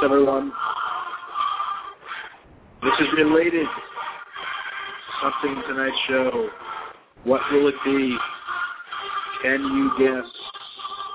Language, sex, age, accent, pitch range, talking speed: English, male, 30-49, American, 130-155 Hz, 80 wpm